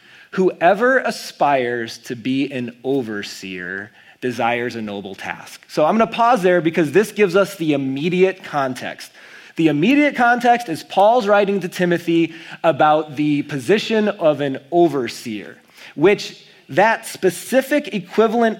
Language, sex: English, male